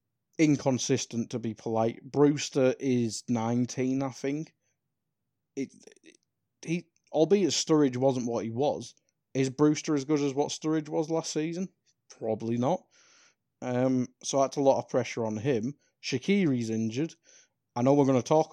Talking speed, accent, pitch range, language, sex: 150 wpm, British, 115-145 Hz, English, male